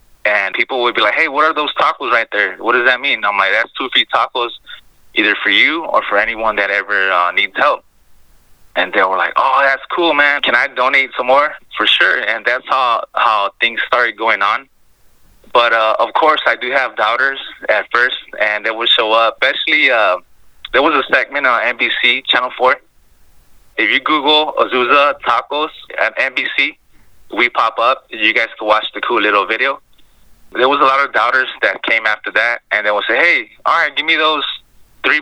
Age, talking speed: 20-39, 205 wpm